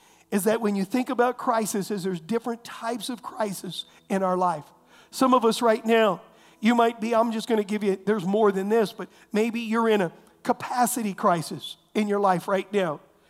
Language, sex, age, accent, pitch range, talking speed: English, male, 50-69, American, 195-230 Hz, 200 wpm